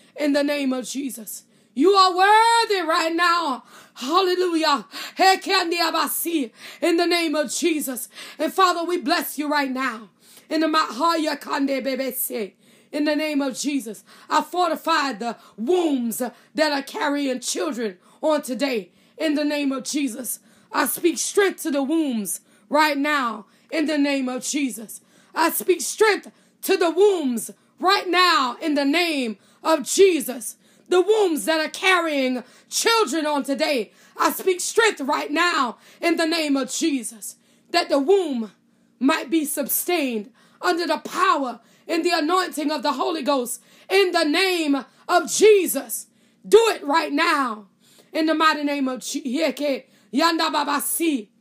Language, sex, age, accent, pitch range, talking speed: English, female, 20-39, American, 250-335 Hz, 140 wpm